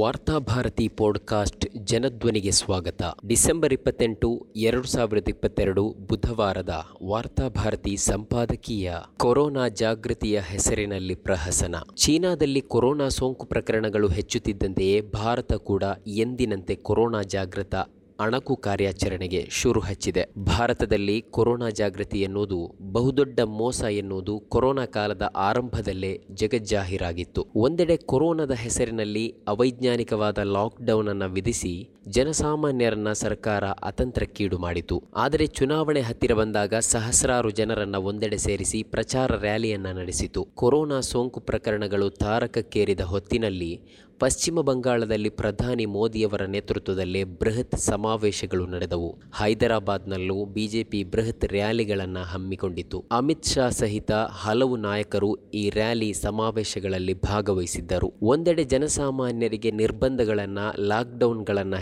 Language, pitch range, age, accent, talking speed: Kannada, 100-120 Hz, 20-39, native, 90 wpm